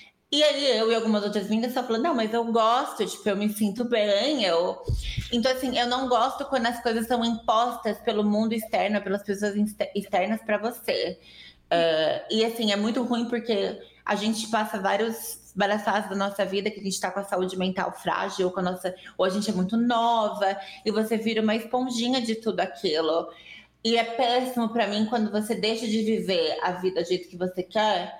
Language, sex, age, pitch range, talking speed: Portuguese, female, 20-39, 190-230 Hz, 195 wpm